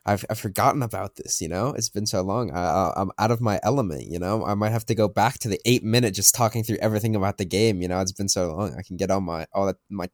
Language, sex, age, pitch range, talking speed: English, male, 20-39, 100-120 Hz, 300 wpm